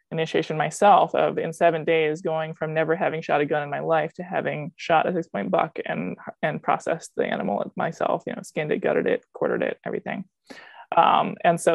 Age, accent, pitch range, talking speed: 20-39, American, 165-210 Hz, 210 wpm